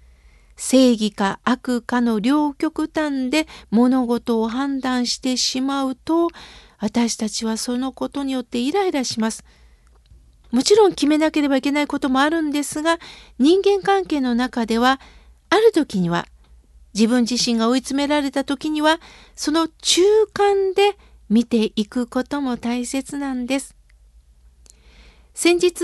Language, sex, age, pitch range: Japanese, female, 50-69, 210-310 Hz